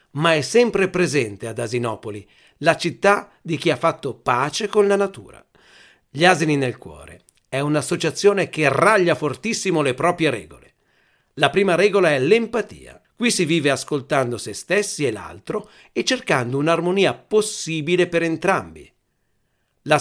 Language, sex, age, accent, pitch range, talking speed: Italian, male, 50-69, native, 135-185 Hz, 145 wpm